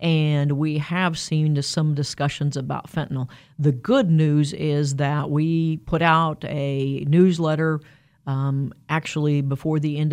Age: 40-59